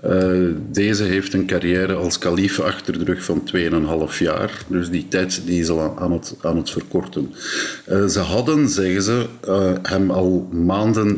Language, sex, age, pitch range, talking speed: Dutch, male, 50-69, 90-105 Hz, 175 wpm